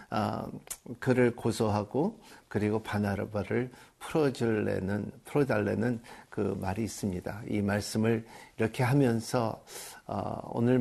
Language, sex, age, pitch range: Korean, male, 50-69, 110-140 Hz